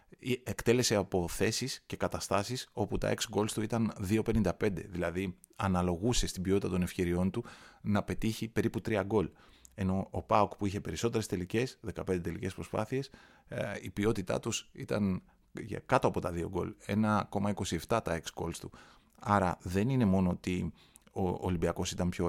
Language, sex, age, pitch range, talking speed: Greek, male, 30-49, 90-110 Hz, 155 wpm